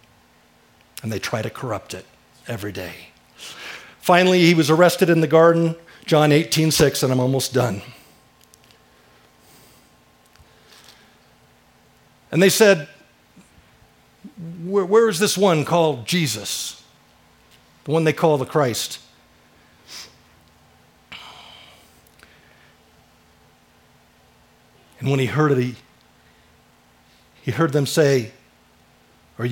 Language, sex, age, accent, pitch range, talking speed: English, male, 50-69, American, 115-170 Hz, 100 wpm